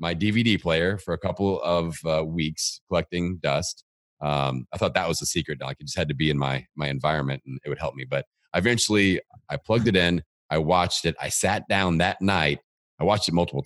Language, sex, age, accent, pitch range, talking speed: English, male, 30-49, American, 75-90 Hz, 230 wpm